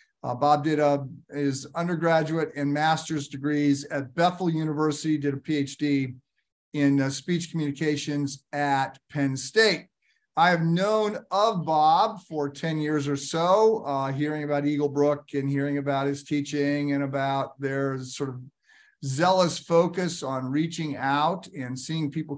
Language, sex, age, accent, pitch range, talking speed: English, male, 50-69, American, 140-170 Hz, 145 wpm